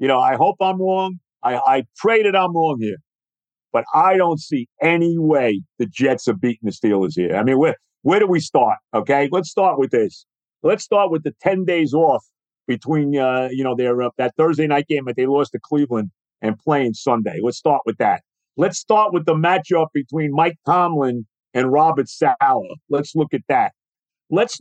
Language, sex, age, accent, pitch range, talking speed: English, male, 50-69, American, 140-190 Hz, 200 wpm